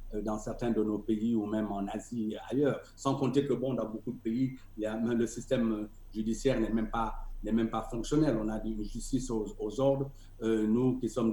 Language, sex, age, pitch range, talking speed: French, male, 50-69, 110-135 Hz, 235 wpm